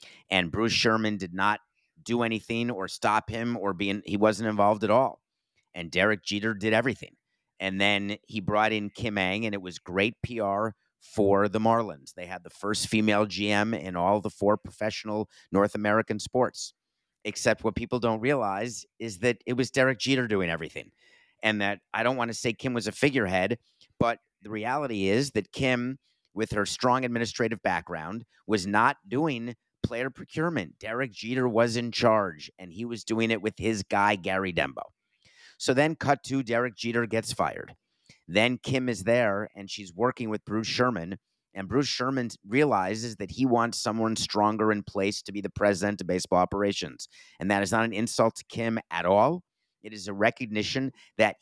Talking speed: 185 wpm